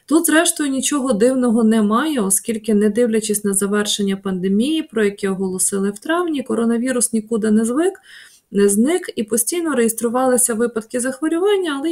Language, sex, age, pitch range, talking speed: Ukrainian, female, 20-39, 205-265 Hz, 140 wpm